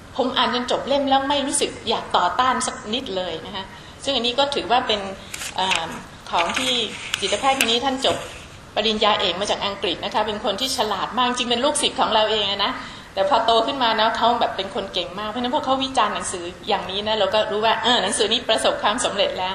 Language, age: Thai, 20-39